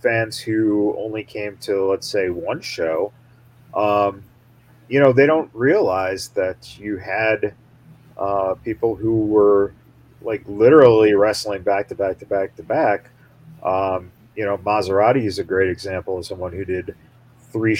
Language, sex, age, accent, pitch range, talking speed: English, male, 40-59, American, 100-125 Hz, 150 wpm